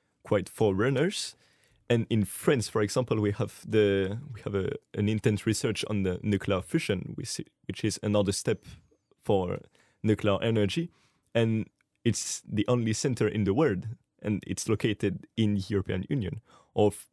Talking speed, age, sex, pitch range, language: 150 wpm, 20-39, male, 100-115 Hz, English